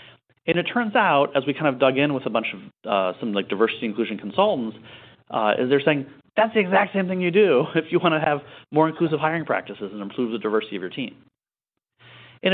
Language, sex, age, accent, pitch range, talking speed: English, male, 30-49, American, 115-150 Hz, 230 wpm